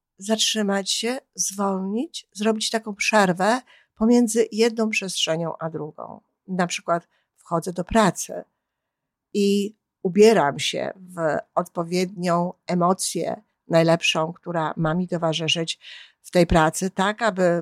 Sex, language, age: female, Polish, 50-69